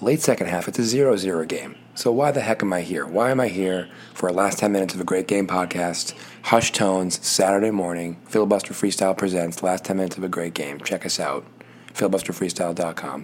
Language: English